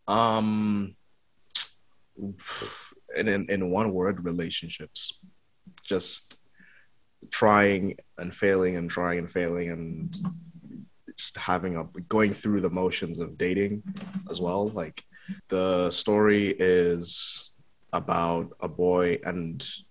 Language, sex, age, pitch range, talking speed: English, male, 20-39, 85-110 Hz, 105 wpm